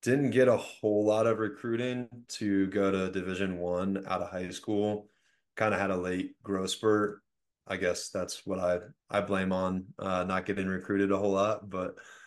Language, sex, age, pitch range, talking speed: English, male, 20-39, 90-105 Hz, 190 wpm